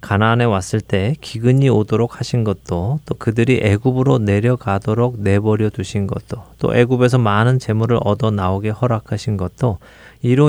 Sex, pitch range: male, 100-130 Hz